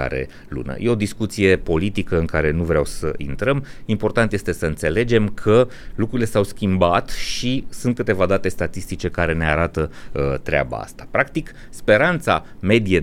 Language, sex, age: Romanian, male, 30-49